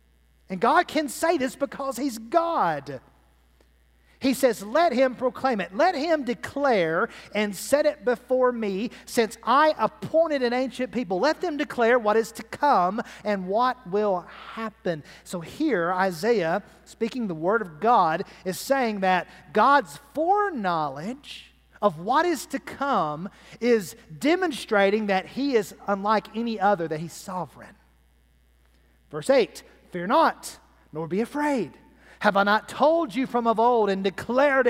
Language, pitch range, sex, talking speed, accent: English, 180-255 Hz, male, 145 wpm, American